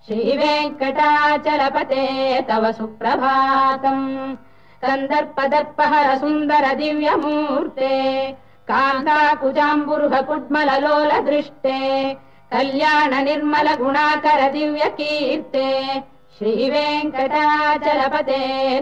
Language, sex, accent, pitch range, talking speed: Kannada, female, native, 265-300 Hz, 60 wpm